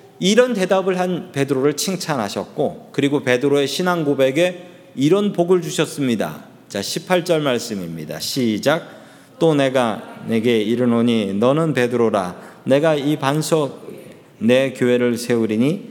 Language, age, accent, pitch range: Korean, 40-59, native, 125-180 Hz